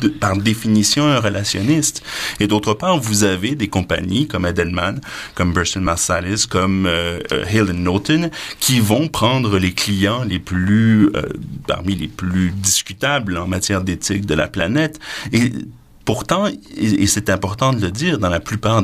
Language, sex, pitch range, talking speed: French, male, 95-125 Hz, 160 wpm